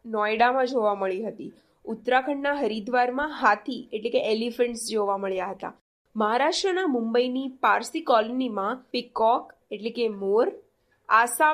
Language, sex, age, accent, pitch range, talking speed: Gujarati, female, 20-39, native, 225-300 Hz, 110 wpm